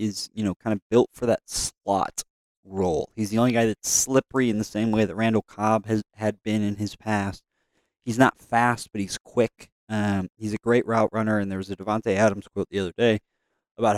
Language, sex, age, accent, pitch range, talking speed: English, male, 20-39, American, 95-115 Hz, 225 wpm